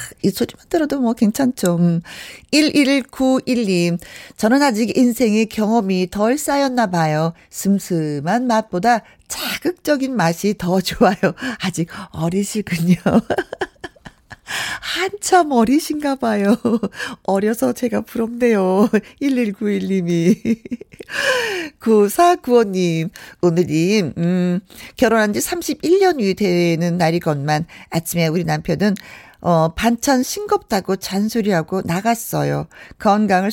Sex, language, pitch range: female, Korean, 175-245 Hz